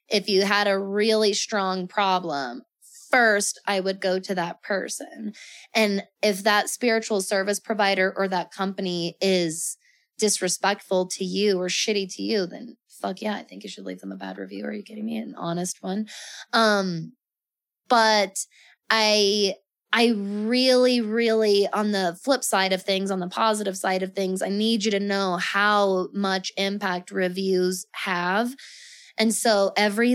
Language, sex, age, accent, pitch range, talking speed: English, female, 20-39, American, 190-220 Hz, 160 wpm